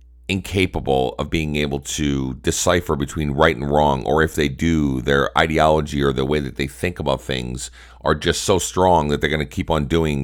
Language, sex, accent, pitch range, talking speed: English, male, American, 65-80 Hz, 205 wpm